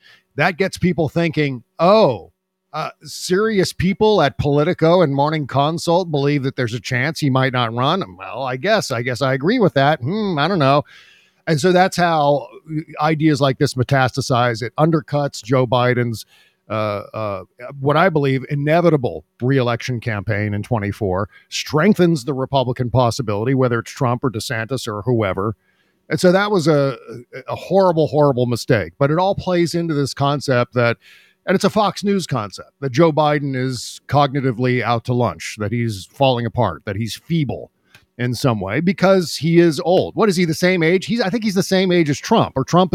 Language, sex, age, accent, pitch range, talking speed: English, male, 50-69, American, 125-170 Hz, 180 wpm